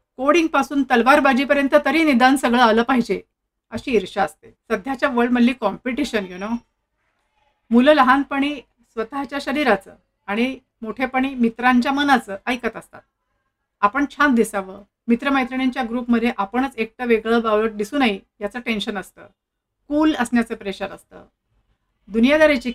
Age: 50-69